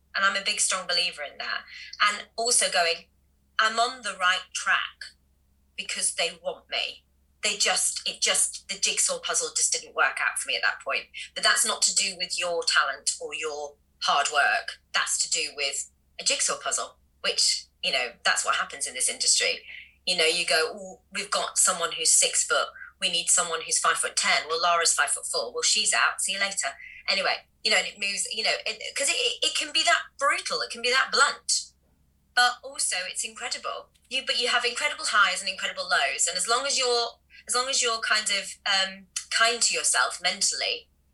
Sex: female